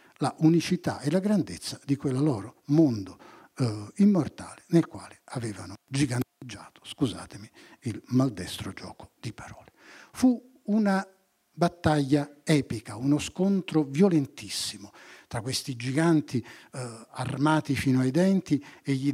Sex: male